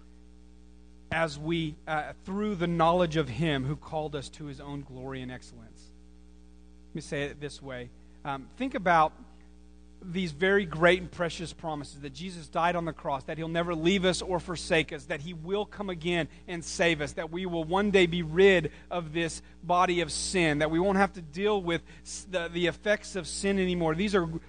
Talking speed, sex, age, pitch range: 200 wpm, male, 40-59, 145-190 Hz